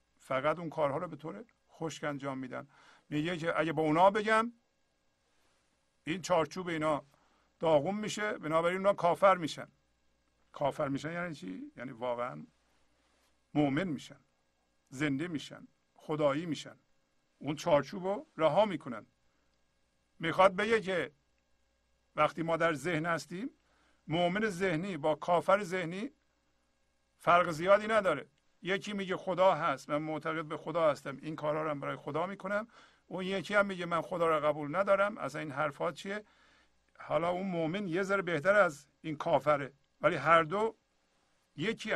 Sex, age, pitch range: male, 50-69, 130-190 Hz